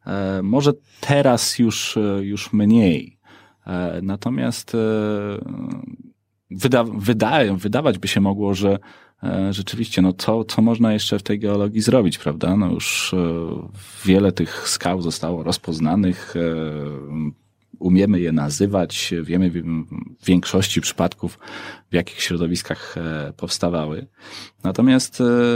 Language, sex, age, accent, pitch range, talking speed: Polish, male, 30-49, native, 90-105 Hz, 100 wpm